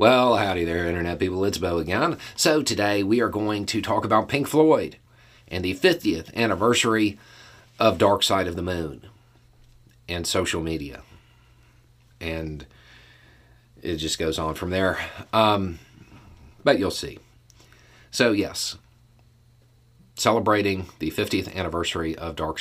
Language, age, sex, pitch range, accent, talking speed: English, 40-59, male, 85-120 Hz, American, 135 wpm